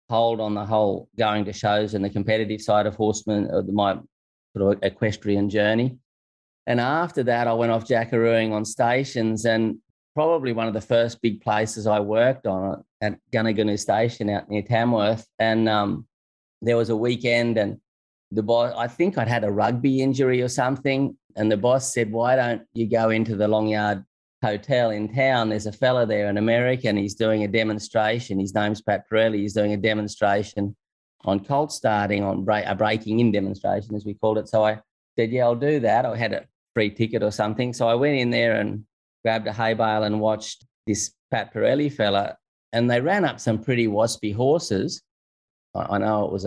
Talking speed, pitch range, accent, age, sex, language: 200 wpm, 105-115 Hz, Australian, 30-49, male, English